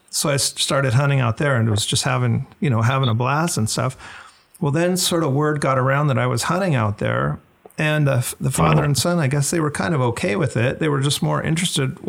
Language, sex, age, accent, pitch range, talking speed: English, male, 40-59, American, 125-150 Hz, 255 wpm